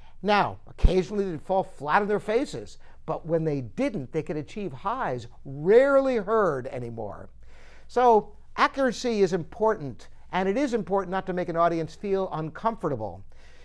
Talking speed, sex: 150 wpm, male